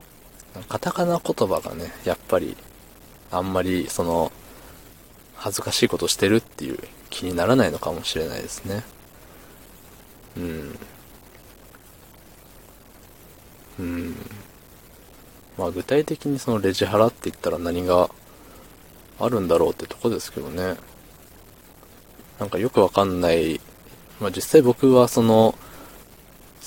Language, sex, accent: Japanese, male, native